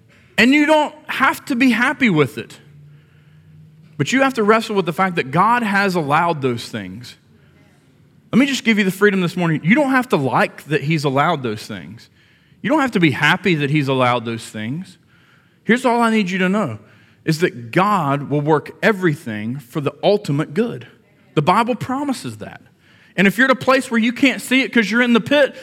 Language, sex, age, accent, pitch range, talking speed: English, male, 40-59, American, 160-245 Hz, 210 wpm